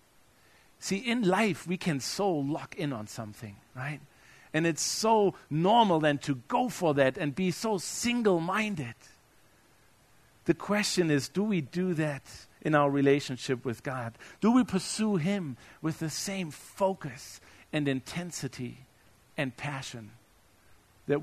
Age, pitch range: 50-69, 125-190 Hz